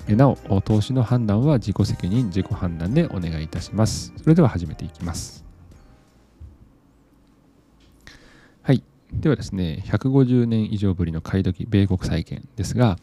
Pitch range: 90-125 Hz